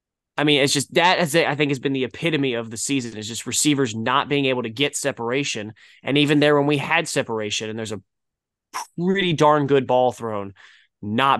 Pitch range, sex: 120-165 Hz, male